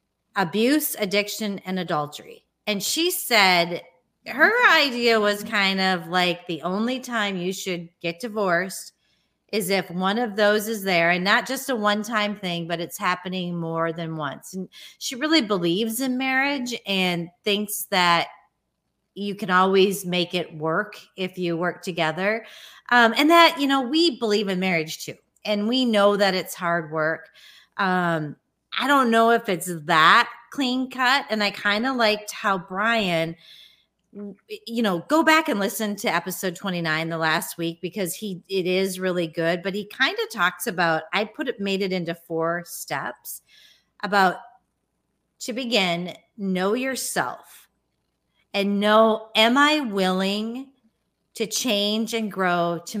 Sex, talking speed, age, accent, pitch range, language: female, 155 wpm, 30-49, American, 175-225 Hz, English